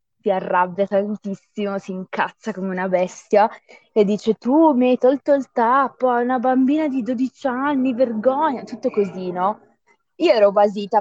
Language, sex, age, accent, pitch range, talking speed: Italian, female, 20-39, native, 185-220 Hz, 155 wpm